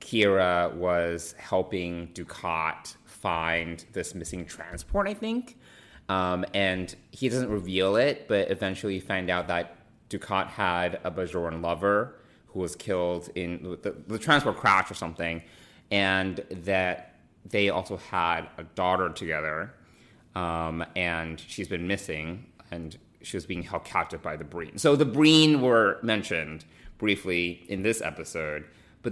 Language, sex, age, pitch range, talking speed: English, male, 30-49, 85-105 Hz, 140 wpm